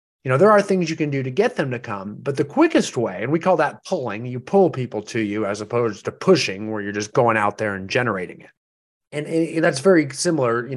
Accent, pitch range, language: American, 110-150 Hz, English